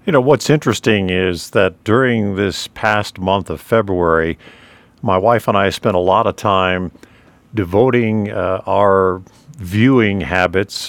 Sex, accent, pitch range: male, American, 100-120 Hz